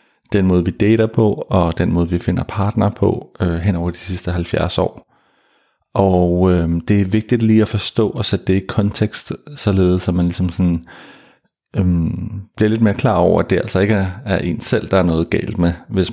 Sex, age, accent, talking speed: male, 40-59, native, 210 wpm